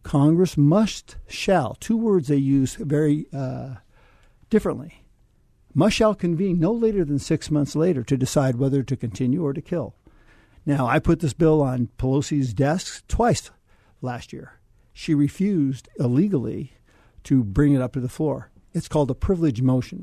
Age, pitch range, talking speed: 60-79, 125-155 Hz, 160 wpm